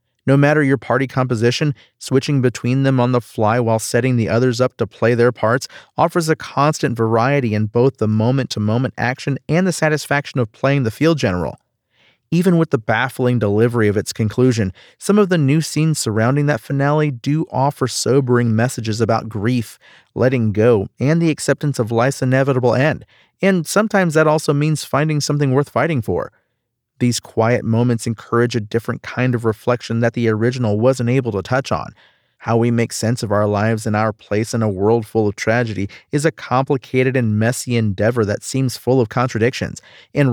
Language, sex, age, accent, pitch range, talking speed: English, male, 40-59, American, 115-140 Hz, 185 wpm